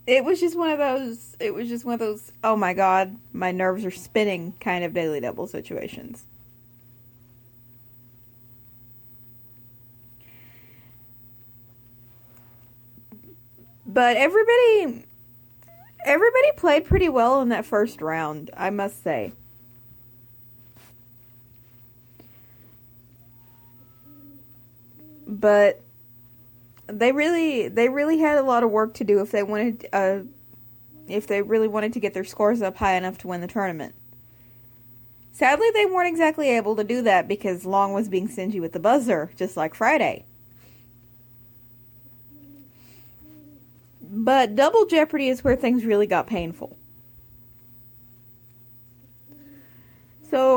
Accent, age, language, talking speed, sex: American, 30-49, English, 115 wpm, female